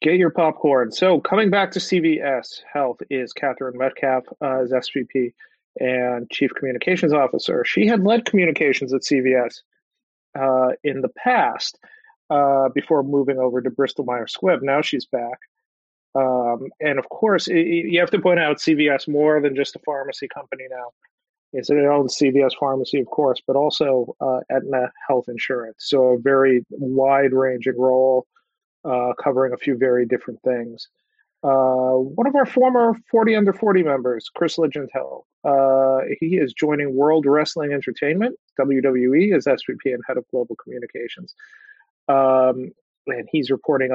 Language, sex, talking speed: English, male, 150 wpm